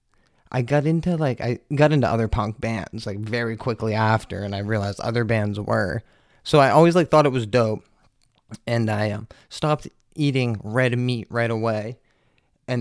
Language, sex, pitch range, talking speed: English, male, 110-130 Hz, 180 wpm